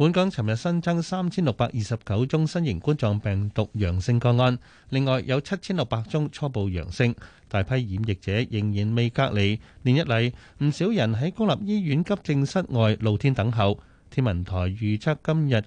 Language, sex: Chinese, male